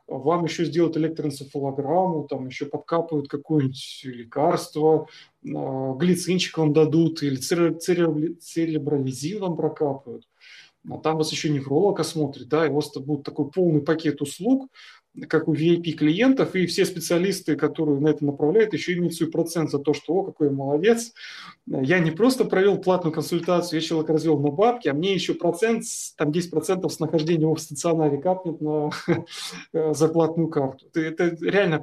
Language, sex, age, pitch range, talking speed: Russian, male, 30-49, 145-170 Hz, 145 wpm